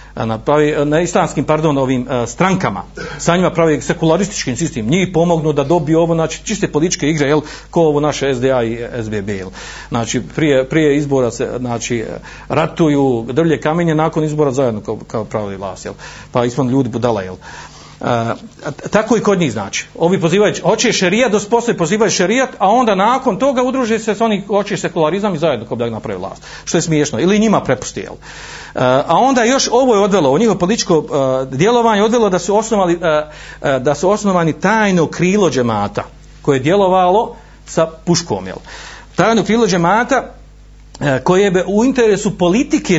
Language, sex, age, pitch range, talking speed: Croatian, male, 50-69, 135-190 Hz, 170 wpm